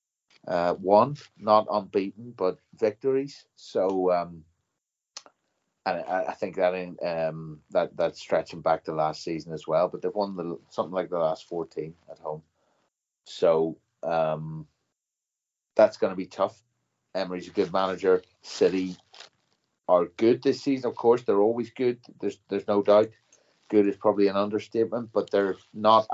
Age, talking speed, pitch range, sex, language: 30-49, 155 wpm, 90-110 Hz, male, English